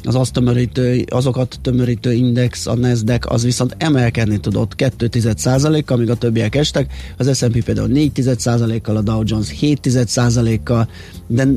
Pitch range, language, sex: 115-135 Hz, Hungarian, male